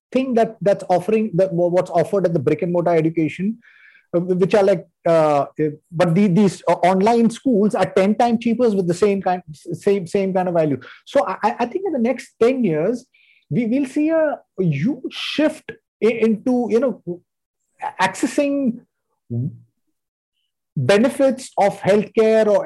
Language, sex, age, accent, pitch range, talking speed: English, male, 30-49, Indian, 165-225 Hz, 155 wpm